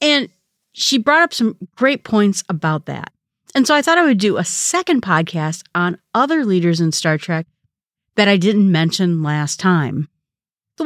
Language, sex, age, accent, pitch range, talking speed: English, female, 40-59, American, 170-215 Hz, 175 wpm